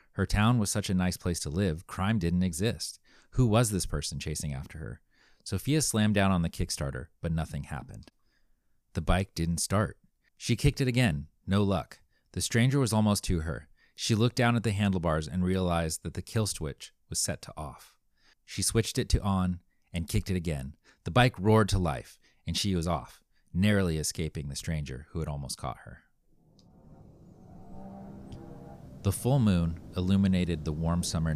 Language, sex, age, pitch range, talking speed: English, male, 30-49, 75-100 Hz, 180 wpm